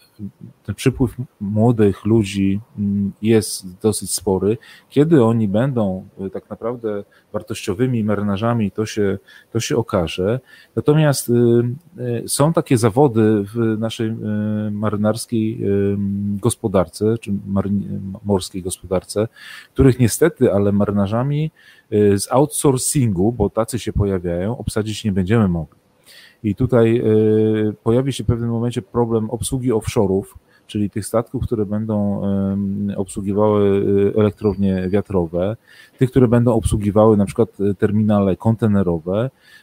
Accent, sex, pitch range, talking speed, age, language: native, male, 100-115 Hz, 105 wpm, 30-49, Polish